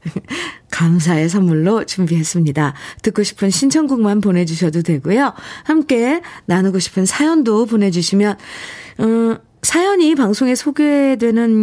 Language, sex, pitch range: Korean, female, 170-260 Hz